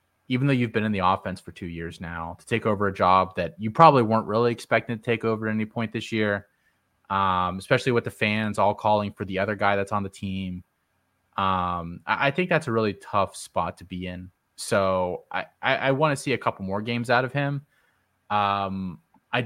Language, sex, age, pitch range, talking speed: English, male, 20-39, 95-115 Hz, 220 wpm